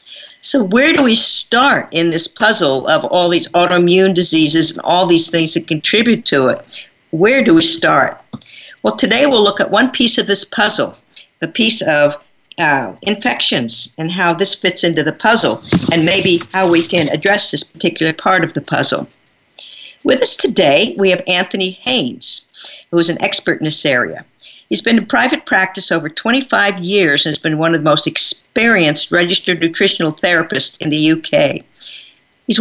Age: 50-69